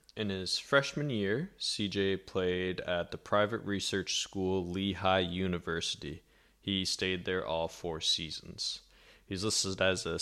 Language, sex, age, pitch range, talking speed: English, male, 20-39, 85-105 Hz, 135 wpm